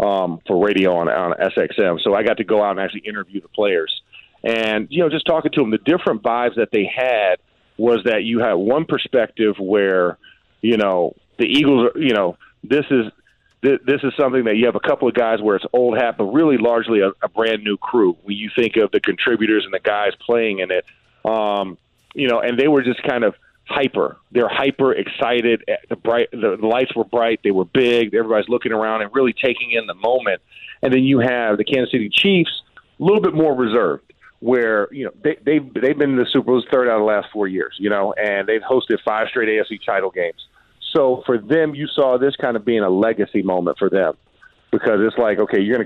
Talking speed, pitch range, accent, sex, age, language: 220 wpm, 105-130 Hz, American, male, 40-59, English